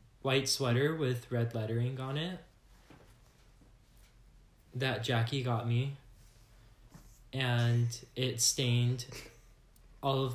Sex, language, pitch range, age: male, English, 115-135 Hz, 10-29